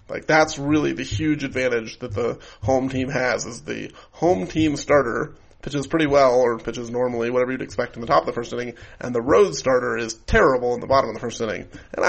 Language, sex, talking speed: English, male, 230 wpm